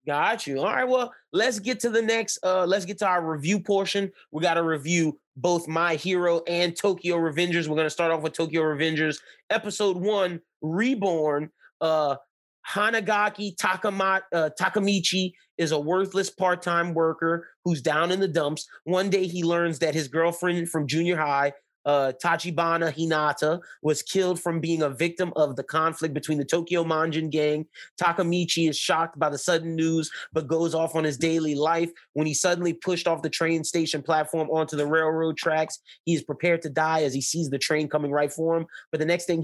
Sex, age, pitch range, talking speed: male, 30-49, 155-180 Hz, 190 wpm